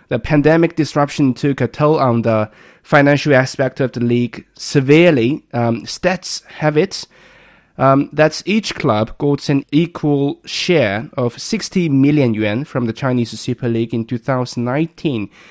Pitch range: 120-150 Hz